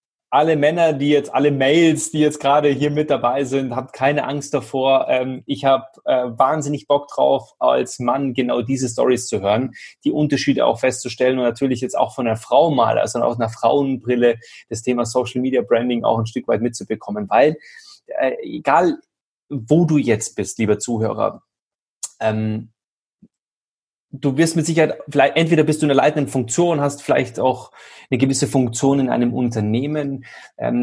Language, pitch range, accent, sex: German, 120-145 Hz, German, male